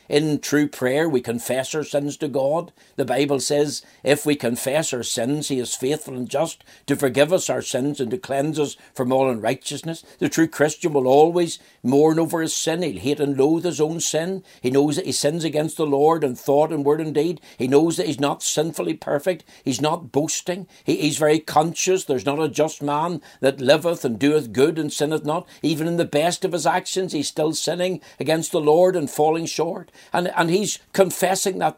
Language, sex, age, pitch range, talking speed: English, male, 60-79, 140-165 Hz, 210 wpm